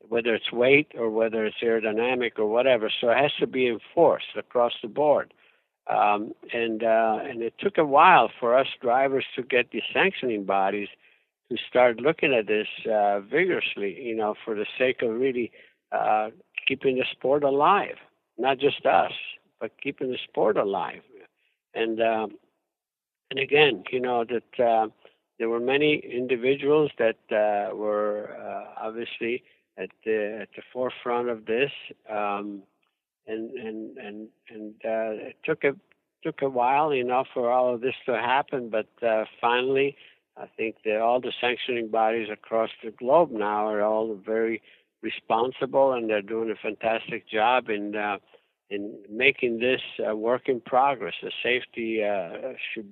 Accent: American